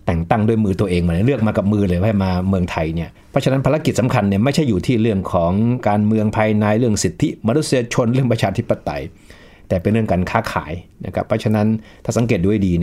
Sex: male